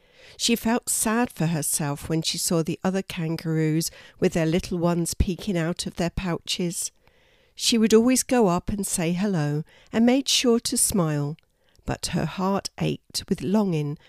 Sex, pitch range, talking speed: female, 160-230 Hz, 165 wpm